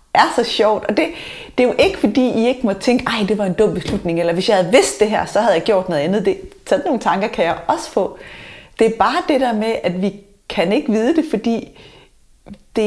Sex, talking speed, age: female, 250 wpm, 30-49